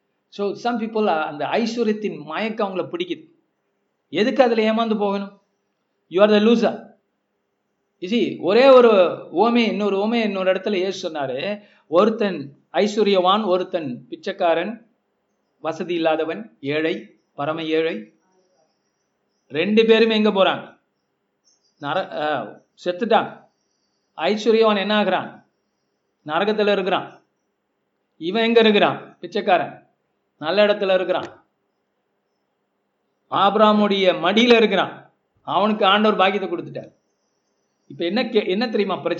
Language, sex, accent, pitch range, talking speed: Tamil, male, native, 170-220 Hz, 85 wpm